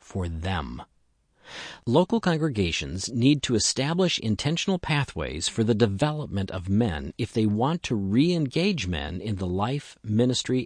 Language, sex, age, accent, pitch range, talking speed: English, male, 50-69, American, 95-140 Hz, 135 wpm